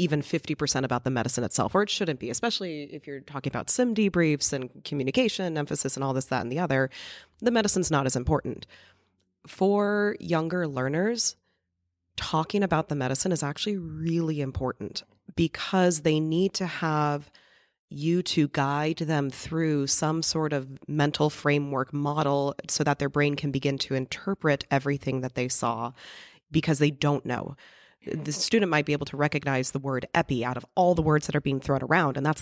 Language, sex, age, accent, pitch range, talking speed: English, female, 30-49, American, 135-165 Hz, 180 wpm